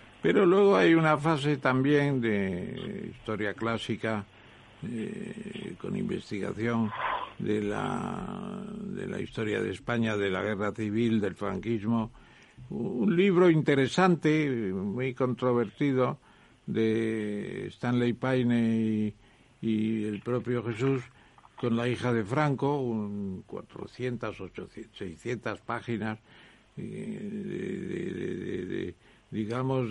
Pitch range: 110-140 Hz